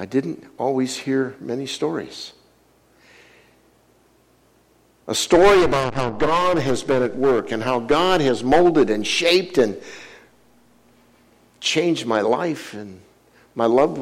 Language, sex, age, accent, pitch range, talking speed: English, male, 60-79, American, 125-210 Hz, 125 wpm